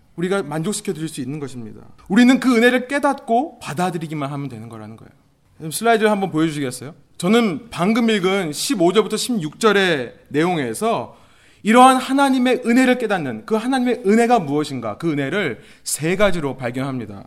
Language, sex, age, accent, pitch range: Korean, male, 30-49, native, 140-225 Hz